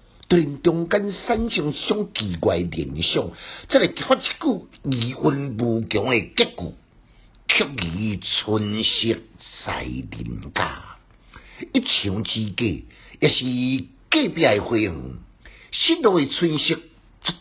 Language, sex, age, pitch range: Chinese, male, 60-79, 95-155 Hz